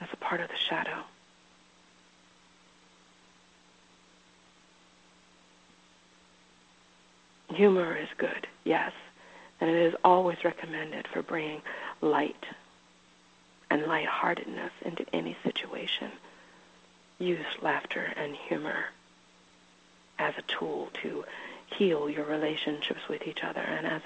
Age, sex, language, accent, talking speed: 40-59, female, English, American, 95 wpm